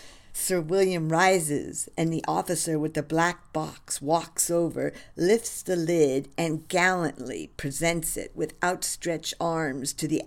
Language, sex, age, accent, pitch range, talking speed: English, female, 50-69, American, 145-170 Hz, 140 wpm